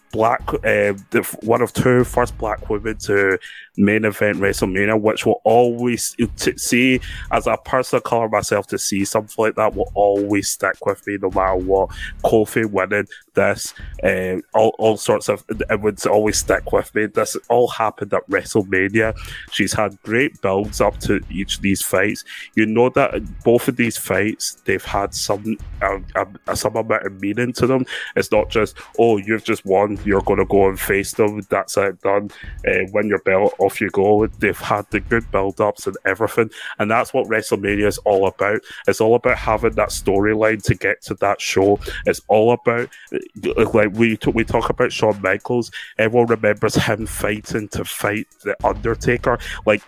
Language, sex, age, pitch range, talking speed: English, male, 20-39, 100-120 Hz, 185 wpm